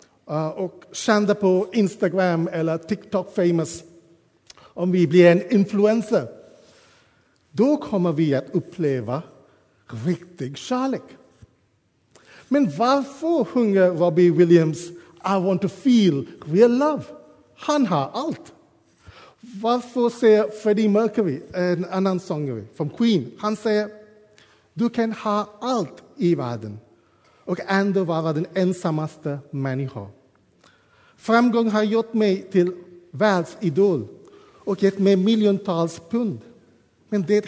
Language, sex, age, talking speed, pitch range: Swedish, male, 50-69, 110 wpm, 150-215 Hz